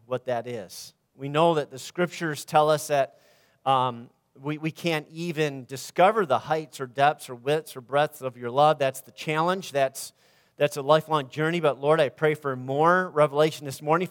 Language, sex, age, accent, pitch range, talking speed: English, male, 40-59, American, 130-165 Hz, 190 wpm